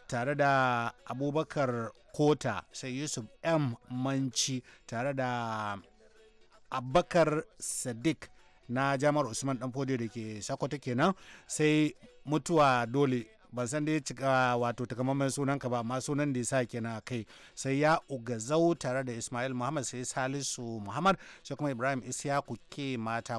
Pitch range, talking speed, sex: 120-145 Hz, 135 wpm, male